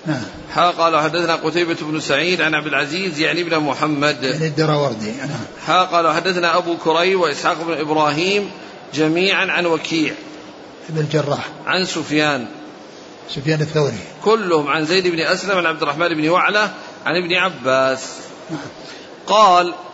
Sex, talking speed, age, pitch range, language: male, 135 wpm, 40-59, 160-190 Hz, Arabic